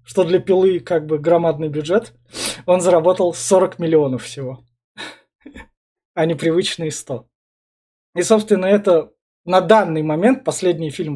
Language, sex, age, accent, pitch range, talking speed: Russian, male, 20-39, native, 160-205 Hz, 130 wpm